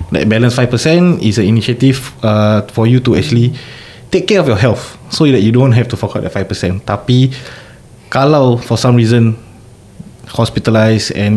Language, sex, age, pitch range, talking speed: Malay, male, 20-39, 110-130 Hz, 175 wpm